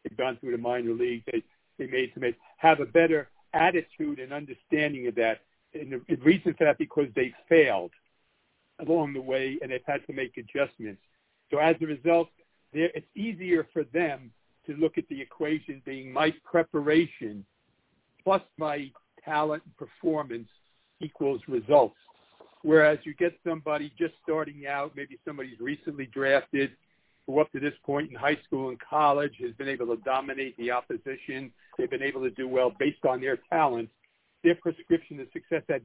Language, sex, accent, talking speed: English, male, American, 170 wpm